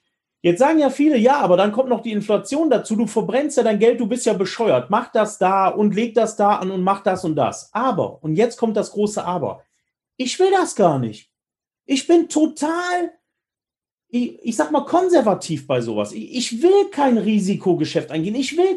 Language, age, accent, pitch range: German, 40-59, German, 190-255 Hz